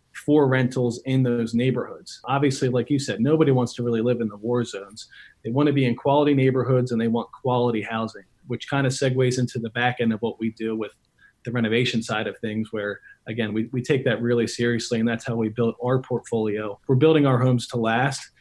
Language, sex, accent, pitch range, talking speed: English, male, American, 115-130 Hz, 225 wpm